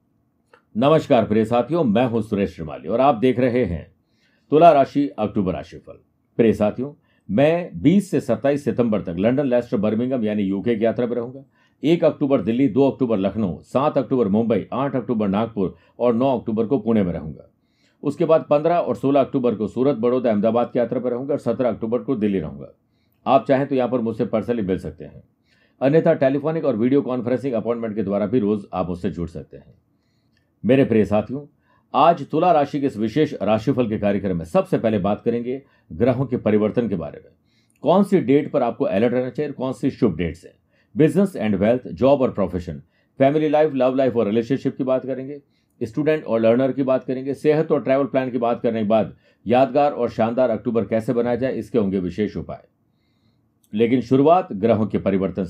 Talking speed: 195 wpm